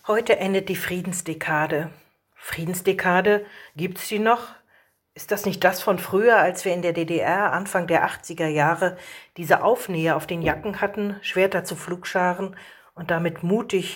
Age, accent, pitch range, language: 40-59, German, 175-220 Hz, German